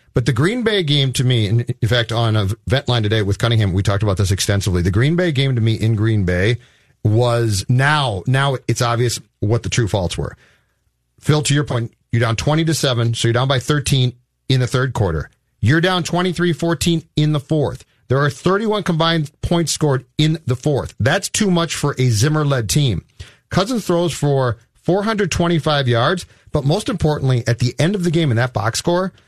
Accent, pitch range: American, 115-150 Hz